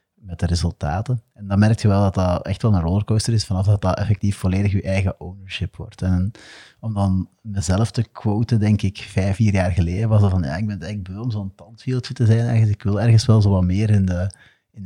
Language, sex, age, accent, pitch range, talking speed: Dutch, male, 30-49, Dutch, 95-110 Hz, 240 wpm